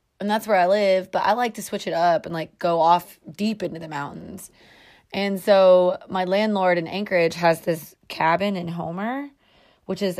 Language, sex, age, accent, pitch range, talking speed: English, female, 20-39, American, 175-250 Hz, 195 wpm